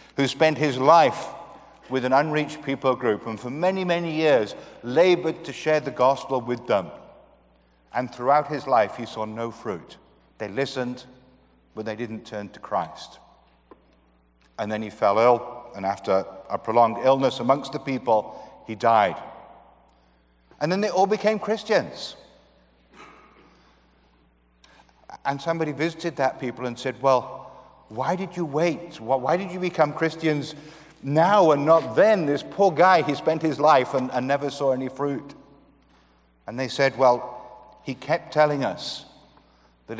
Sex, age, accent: male, 50-69, British